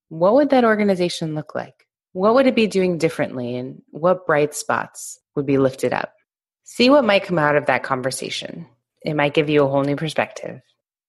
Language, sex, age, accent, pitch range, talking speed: English, female, 20-39, American, 140-175 Hz, 195 wpm